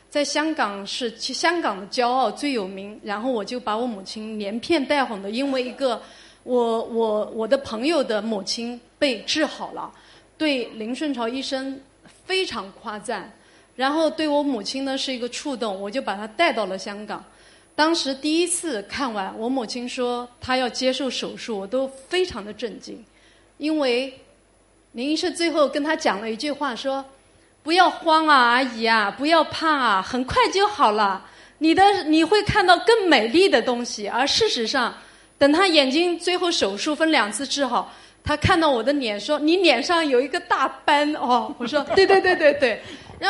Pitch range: 230-315 Hz